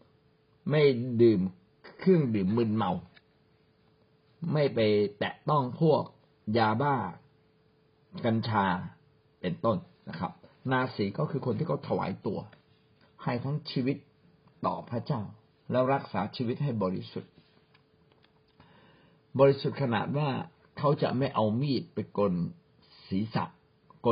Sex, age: male, 60-79